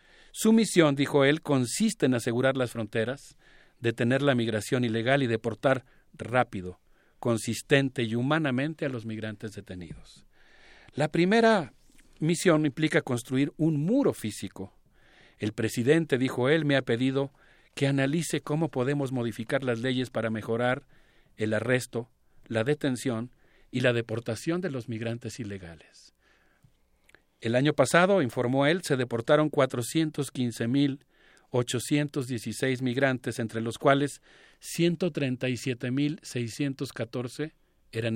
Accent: Mexican